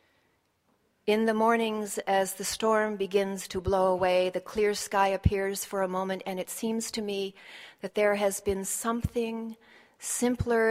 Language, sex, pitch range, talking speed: English, female, 180-215 Hz, 155 wpm